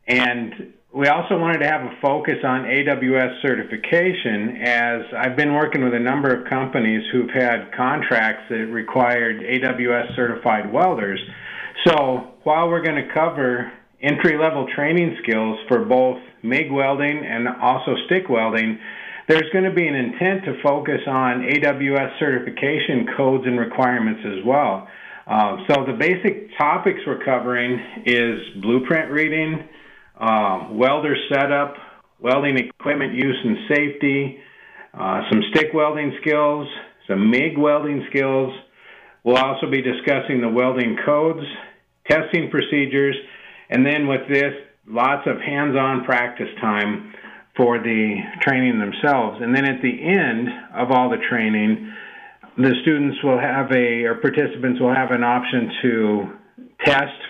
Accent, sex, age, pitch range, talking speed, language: American, male, 50-69, 125-150 Hz, 135 wpm, English